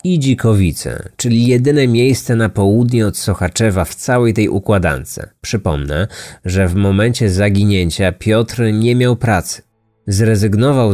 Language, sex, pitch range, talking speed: Polish, male, 95-125 Hz, 125 wpm